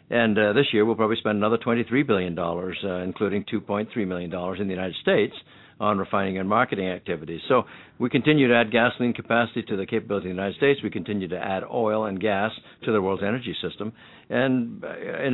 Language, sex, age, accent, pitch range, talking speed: English, male, 60-79, American, 105-125 Hz, 220 wpm